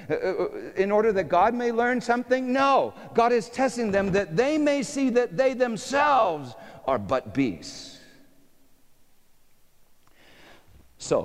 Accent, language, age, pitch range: American, English, 50-69, 145-215 Hz